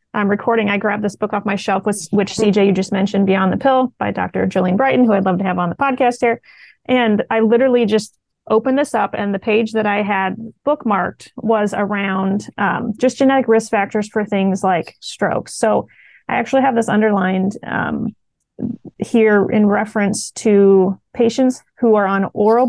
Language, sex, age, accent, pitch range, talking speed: English, female, 30-49, American, 195-225 Hz, 190 wpm